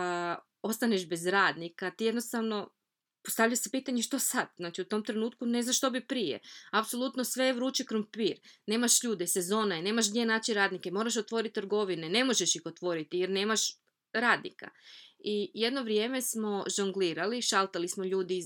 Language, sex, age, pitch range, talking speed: Croatian, female, 20-39, 180-225 Hz, 165 wpm